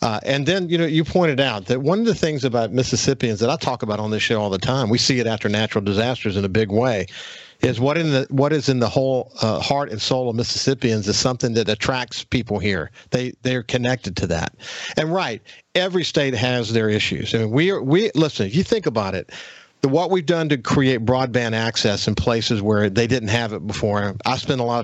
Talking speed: 240 wpm